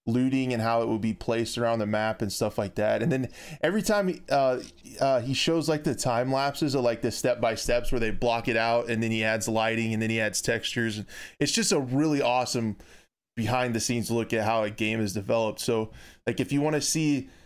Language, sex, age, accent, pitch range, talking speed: English, male, 20-39, American, 115-135 Hz, 230 wpm